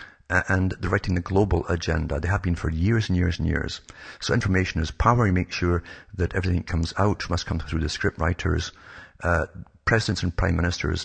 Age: 50-69